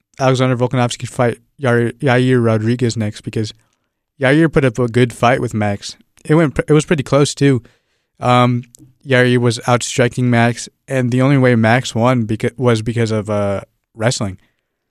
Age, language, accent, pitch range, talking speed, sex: 20-39, English, American, 115-130 Hz, 155 wpm, male